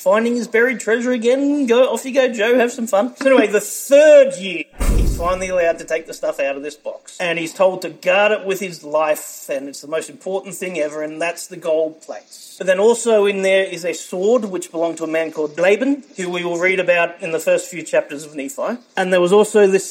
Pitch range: 165-200 Hz